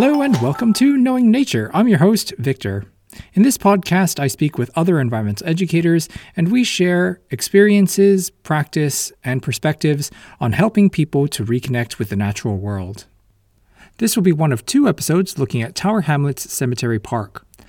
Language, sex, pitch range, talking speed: English, male, 120-185 Hz, 165 wpm